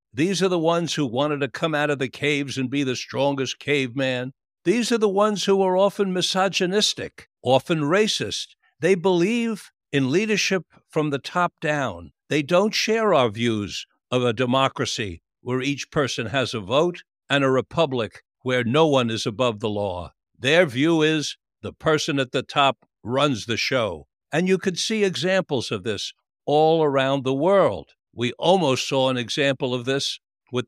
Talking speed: 175 wpm